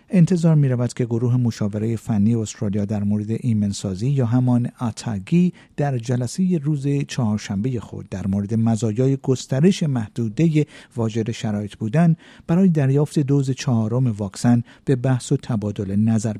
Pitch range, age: 110-145 Hz, 50-69